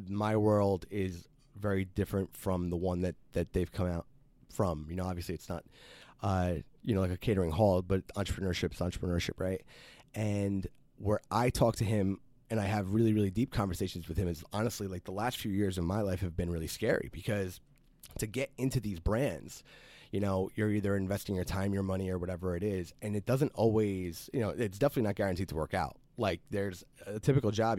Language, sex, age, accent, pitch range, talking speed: English, male, 30-49, American, 90-110 Hz, 210 wpm